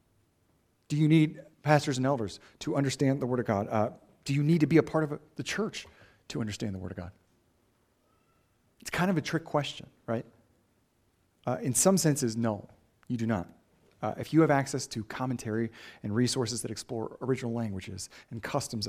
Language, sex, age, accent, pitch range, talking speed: English, male, 40-59, American, 110-145 Hz, 185 wpm